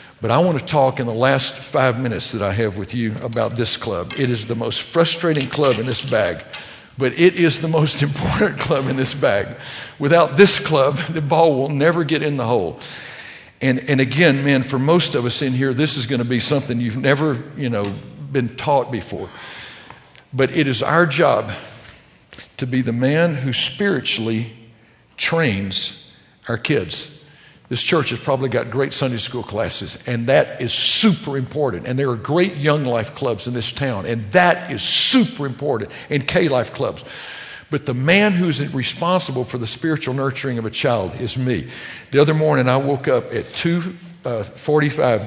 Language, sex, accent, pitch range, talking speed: English, male, American, 120-155 Hz, 185 wpm